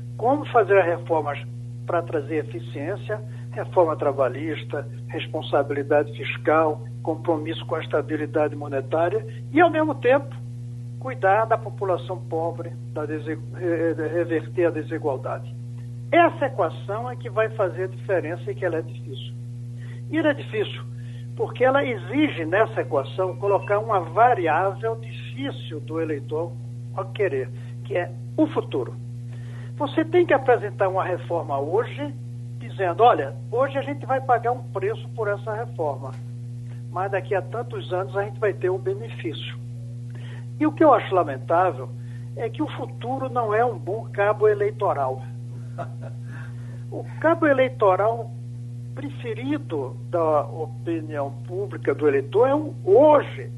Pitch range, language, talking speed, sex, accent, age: 120-155 Hz, Portuguese, 135 wpm, male, Brazilian, 60-79